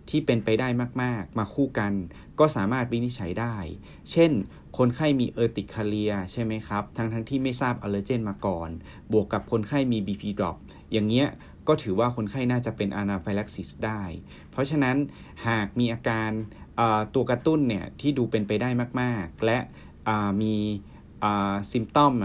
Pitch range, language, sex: 100-130 Hz, Thai, male